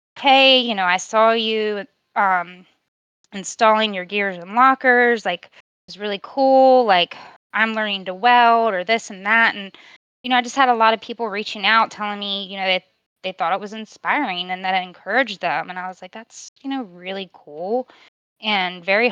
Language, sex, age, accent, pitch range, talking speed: English, female, 20-39, American, 190-230 Hz, 200 wpm